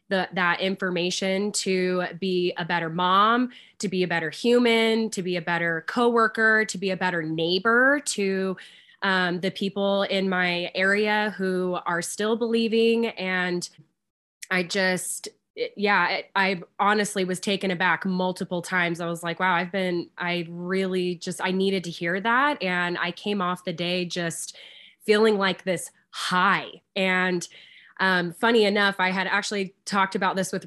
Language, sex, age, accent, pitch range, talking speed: English, female, 20-39, American, 180-205 Hz, 155 wpm